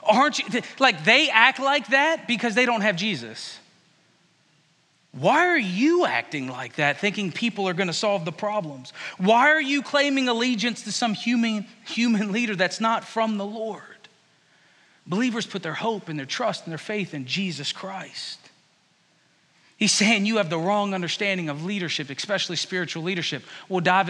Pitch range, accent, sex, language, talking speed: 185-245 Hz, American, male, English, 165 wpm